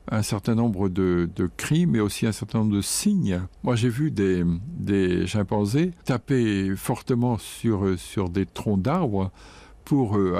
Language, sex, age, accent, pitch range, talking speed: French, male, 60-79, French, 95-120 Hz, 160 wpm